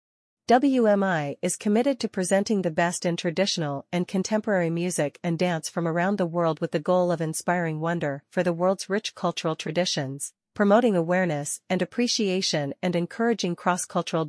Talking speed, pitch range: 155 wpm, 160-195 Hz